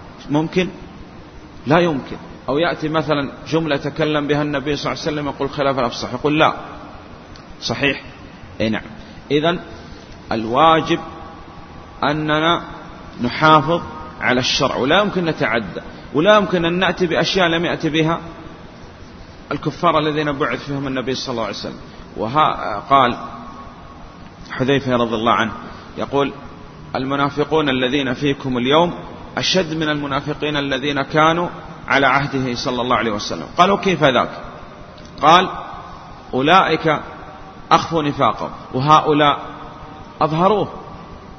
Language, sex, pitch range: Arabic, male, 130-160 Hz